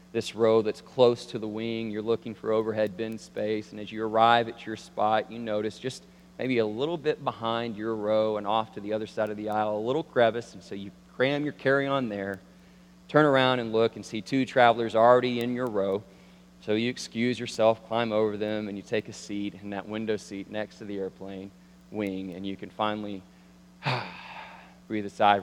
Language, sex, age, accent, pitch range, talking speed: English, male, 40-59, American, 100-120 Hz, 210 wpm